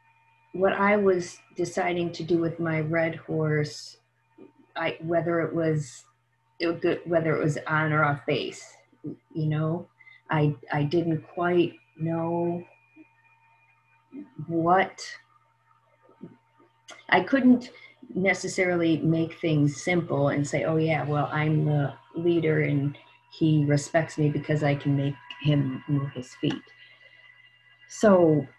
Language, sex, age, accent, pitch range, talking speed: English, female, 40-59, American, 145-180 Hz, 125 wpm